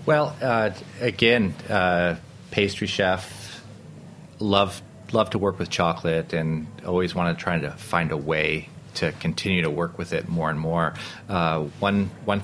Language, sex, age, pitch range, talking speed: English, male, 30-49, 85-100 Hz, 160 wpm